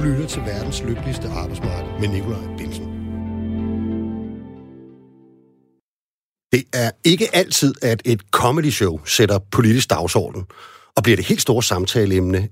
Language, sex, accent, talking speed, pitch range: Danish, male, native, 120 wpm, 105-140 Hz